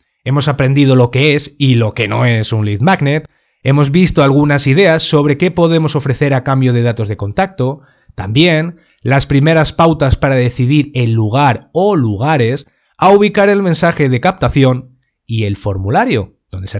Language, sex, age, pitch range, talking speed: Spanish, male, 30-49, 120-160 Hz, 170 wpm